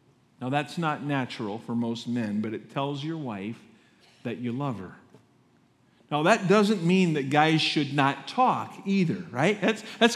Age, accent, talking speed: 50-69, American, 170 wpm